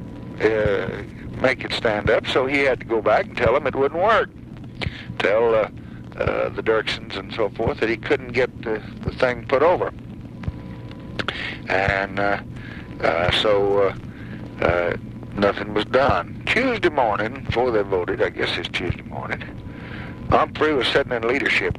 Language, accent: English, American